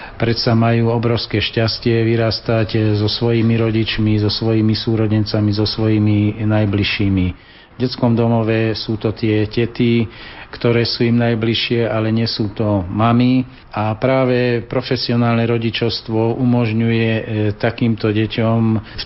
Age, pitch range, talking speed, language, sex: 40-59, 110-120 Hz, 125 wpm, Slovak, male